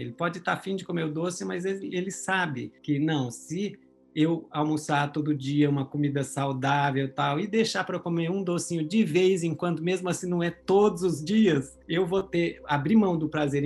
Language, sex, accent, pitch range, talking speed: Portuguese, male, Brazilian, 140-175 Hz, 205 wpm